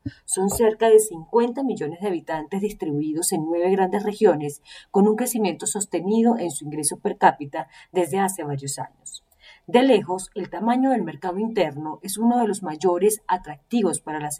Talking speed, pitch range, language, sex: 165 wpm, 160-215 Hz, Spanish, female